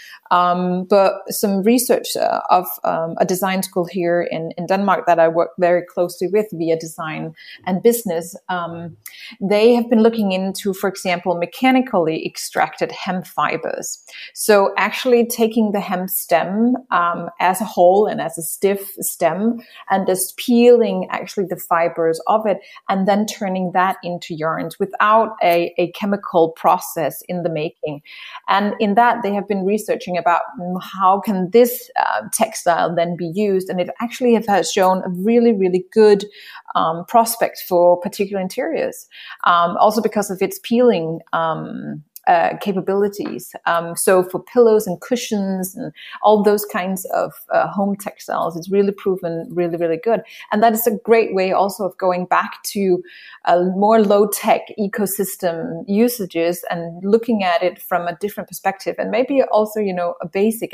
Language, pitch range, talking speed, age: German, 175-215 Hz, 160 wpm, 30-49